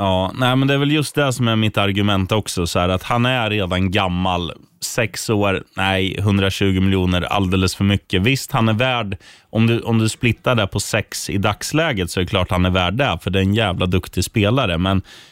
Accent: native